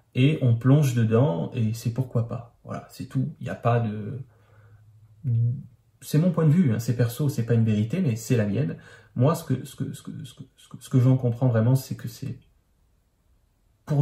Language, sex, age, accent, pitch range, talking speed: French, male, 40-59, French, 115-135 Hz, 215 wpm